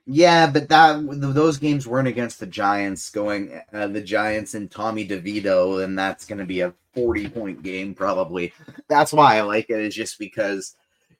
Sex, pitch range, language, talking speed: male, 95-125 Hz, English, 175 wpm